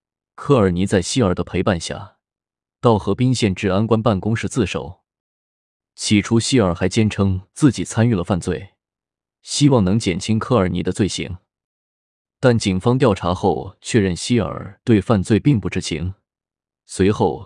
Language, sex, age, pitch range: Chinese, male, 20-39, 90-115 Hz